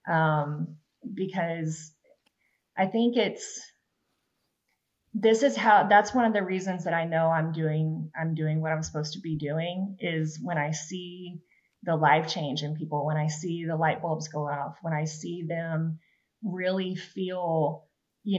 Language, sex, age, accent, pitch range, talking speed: English, female, 20-39, American, 155-185 Hz, 165 wpm